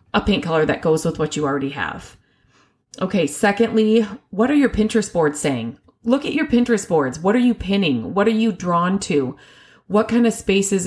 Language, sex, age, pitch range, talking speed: English, female, 30-49, 150-205 Hz, 200 wpm